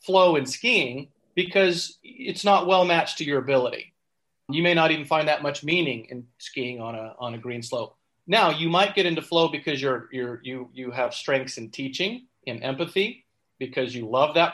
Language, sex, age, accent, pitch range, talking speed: English, male, 40-59, American, 130-175 Hz, 200 wpm